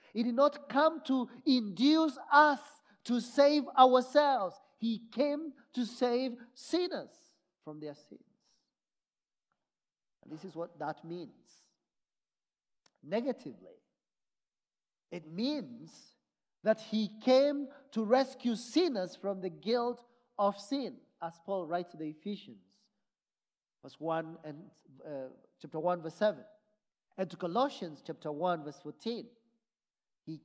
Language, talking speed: English, 120 wpm